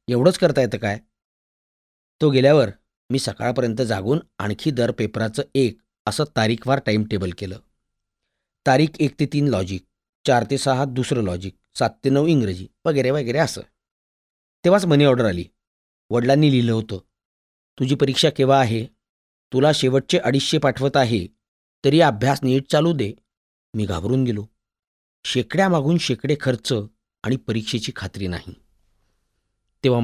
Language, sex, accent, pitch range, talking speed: Marathi, male, native, 105-145 Hz, 135 wpm